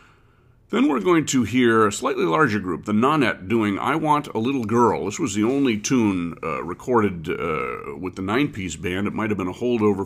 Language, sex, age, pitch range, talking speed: English, male, 50-69, 90-120 Hz, 210 wpm